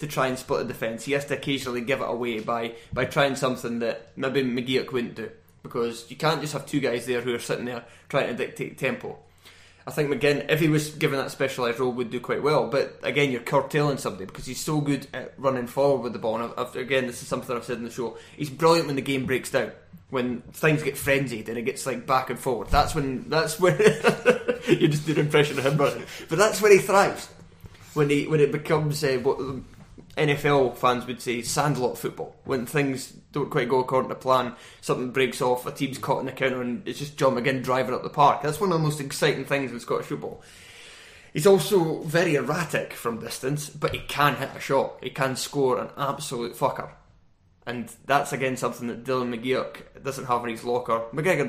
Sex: male